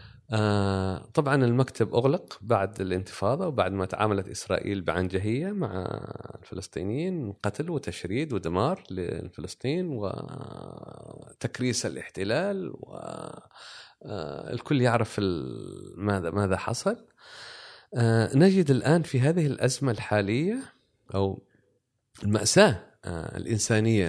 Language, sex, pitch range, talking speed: Arabic, male, 100-135 Hz, 95 wpm